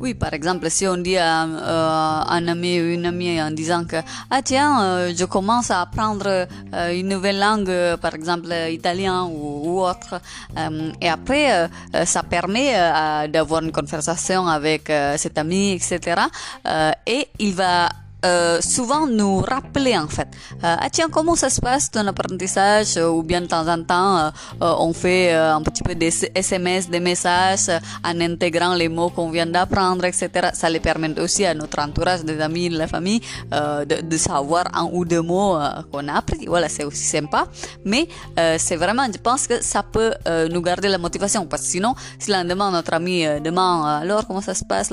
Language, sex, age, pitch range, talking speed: French, female, 20-39, 160-190 Hz, 205 wpm